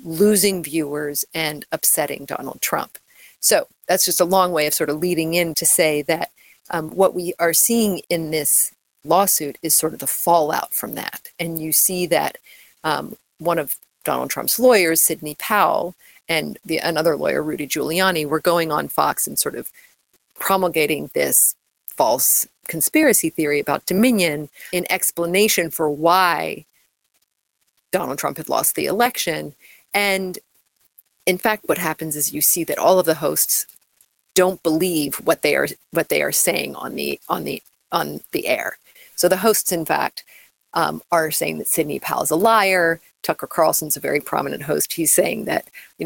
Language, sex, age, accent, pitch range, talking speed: English, female, 40-59, American, 155-185 Hz, 170 wpm